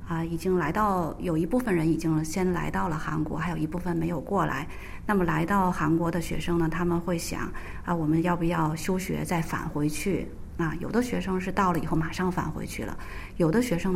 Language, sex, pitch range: Chinese, female, 165-195 Hz